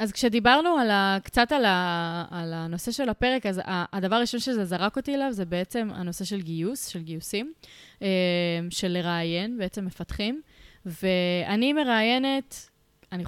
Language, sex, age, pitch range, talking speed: English, female, 20-39, 180-225 Hz, 145 wpm